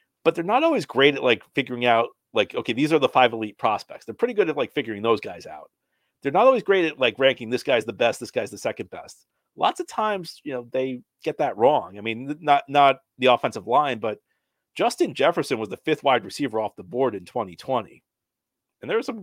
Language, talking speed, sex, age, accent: English, 235 wpm, male, 40-59, American